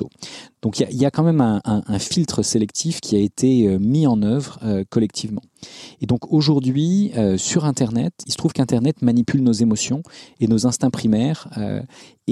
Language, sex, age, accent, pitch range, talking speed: French, male, 40-59, French, 100-125 Hz, 180 wpm